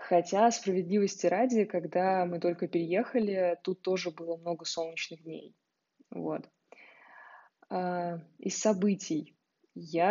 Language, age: Russian, 20-39